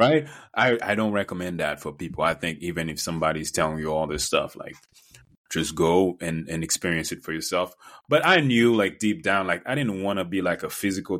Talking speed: 225 wpm